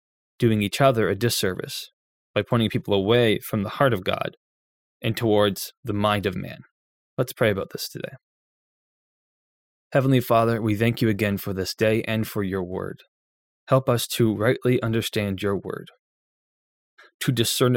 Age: 20-39